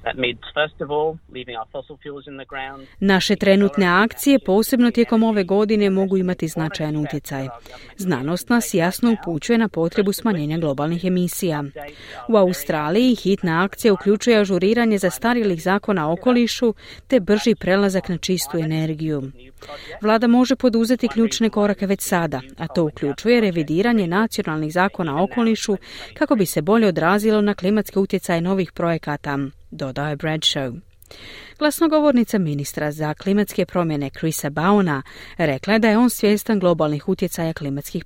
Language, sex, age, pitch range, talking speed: Croatian, female, 30-49, 155-215 Hz, 125 wpm